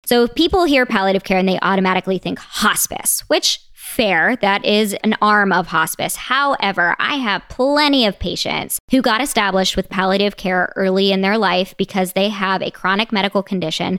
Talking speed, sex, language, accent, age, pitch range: 180 wpm, male, English, American, 20-39, 185-225 Hz